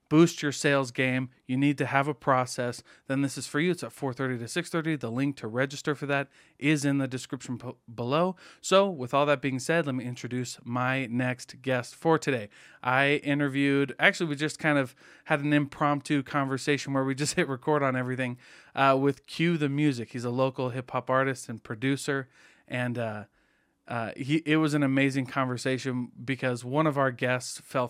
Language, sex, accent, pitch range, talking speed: English, male, American, 125-145 Hz, 195 wpm